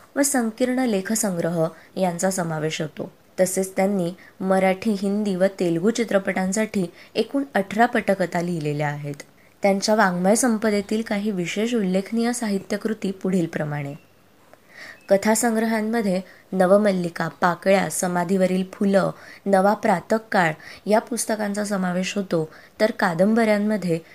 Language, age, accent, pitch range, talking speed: Marathi, 20-39, native, 180-215 Hz, 95 wpm